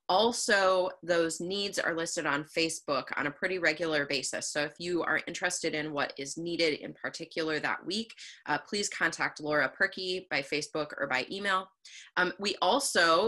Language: English